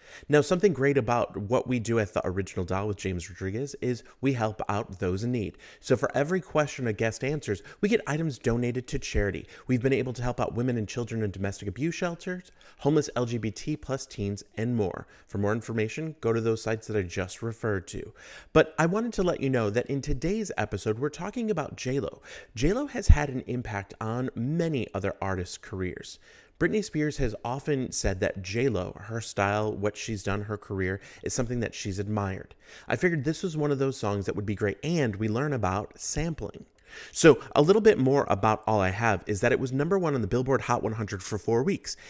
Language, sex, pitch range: English, male, 105-145 Hz